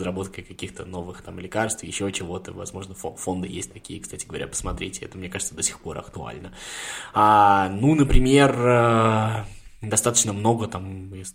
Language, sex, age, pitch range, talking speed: Russian, male, 20-39, 95-120 Hz, 150 wpm